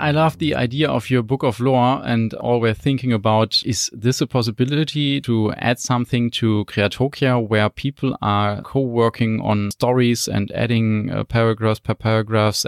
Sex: male